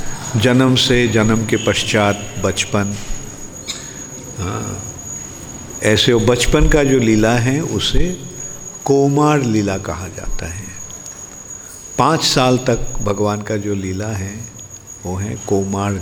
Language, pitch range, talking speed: English, 100-130 Hz, 110 wpm